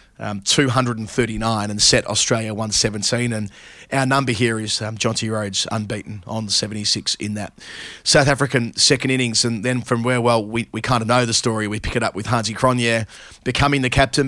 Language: English